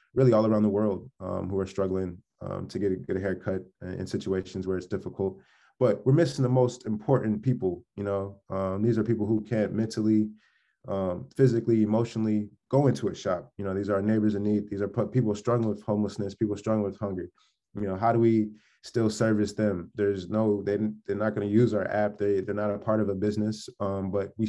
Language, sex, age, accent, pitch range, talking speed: English, male, 20-39, American, 100-110 Hz, 225 wpm